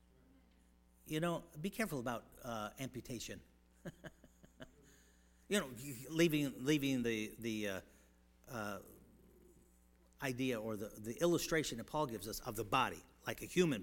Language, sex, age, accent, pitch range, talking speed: English, male, 50-69, American, 85-140 Hz, 130 wpm